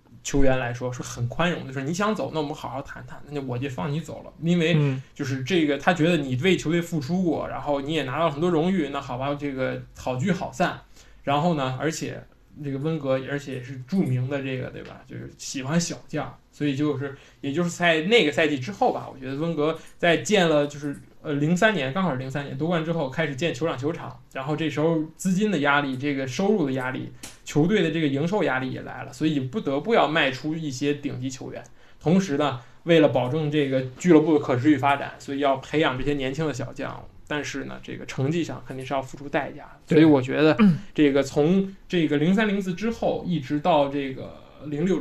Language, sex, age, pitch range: Chinese, male, 20-39, 135-165 Hz